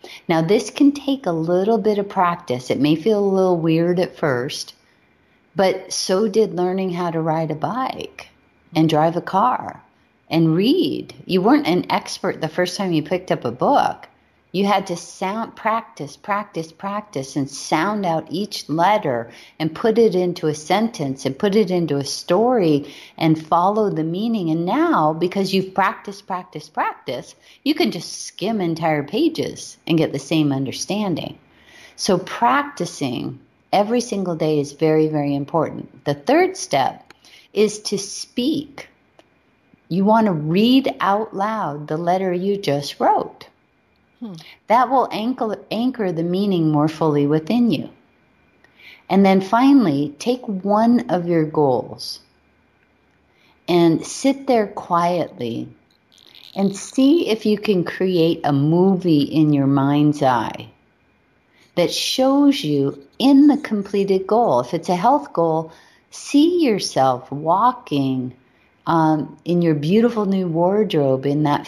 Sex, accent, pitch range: female, American, 155-215 Hz